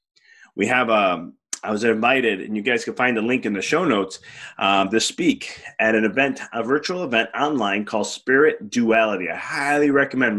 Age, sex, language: 30-49, male, English